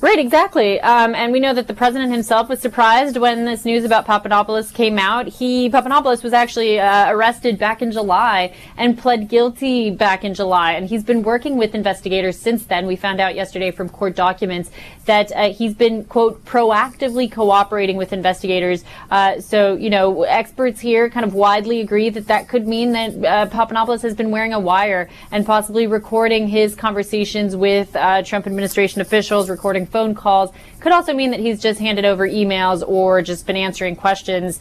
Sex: female